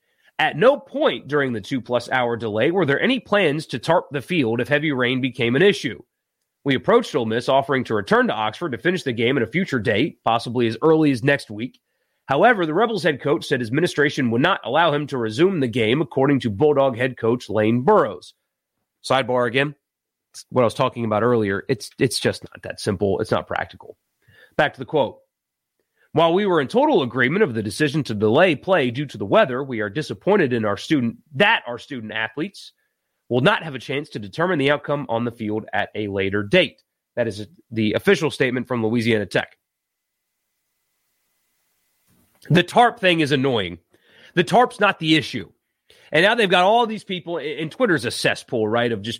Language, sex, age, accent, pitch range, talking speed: English, male, 30-49, American, 115-160 Hz, 195 wpm